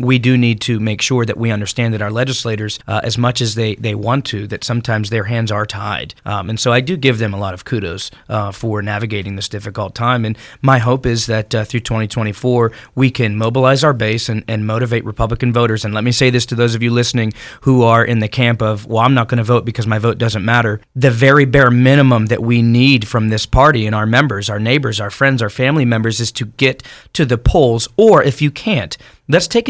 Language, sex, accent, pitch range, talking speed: English, male, American, 110-130 Hz, 245 wpm